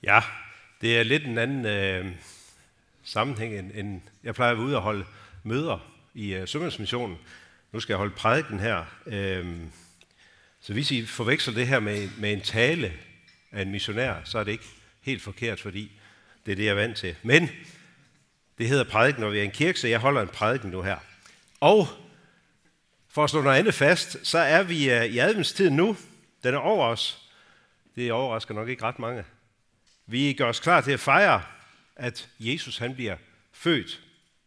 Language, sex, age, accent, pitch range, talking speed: Danish, male, 60-79, native, 105-140 Hz, 185 wpm